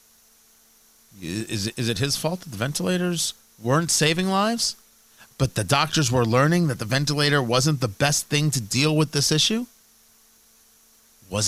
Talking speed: 150 wpm